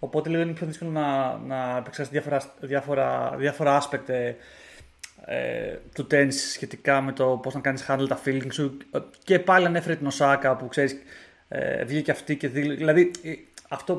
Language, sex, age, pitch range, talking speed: Greek, male, 20-39, 135-170 Hz, 170 wpm